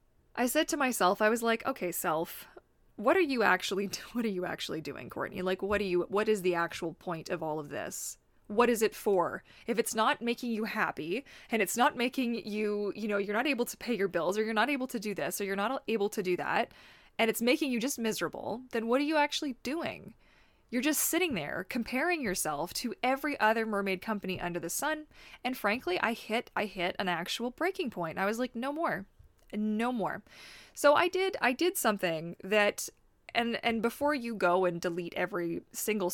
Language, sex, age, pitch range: English, female, 20-39, 180-240 Hz